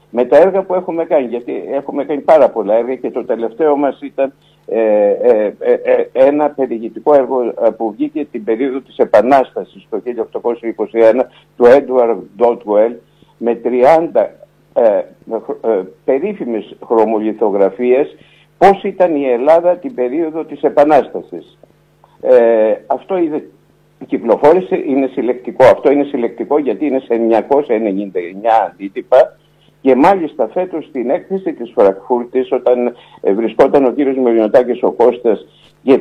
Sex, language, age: male, Greek, 60-79